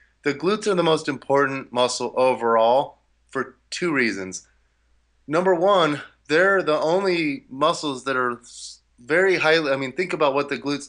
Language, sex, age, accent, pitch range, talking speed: English, male, 30-49, American, 120-155 Hz, 155 wpm